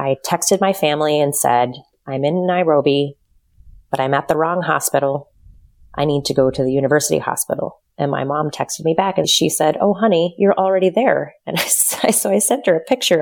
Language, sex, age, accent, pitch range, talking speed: English, female, 30-49, American, 135-170 Hz, 200 wpm